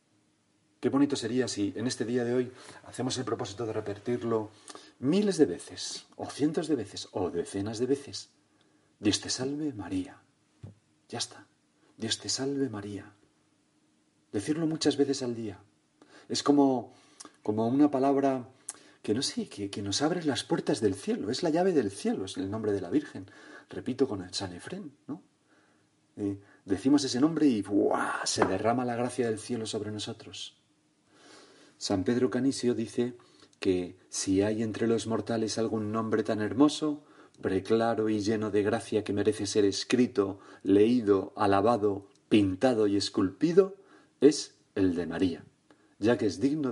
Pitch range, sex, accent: 100-130 Hz, male, Spanish